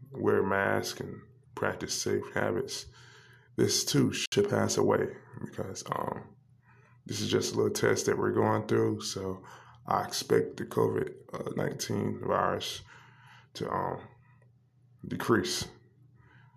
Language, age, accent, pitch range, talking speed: English, 20-39, American, 105-125 Hz, 120 wpm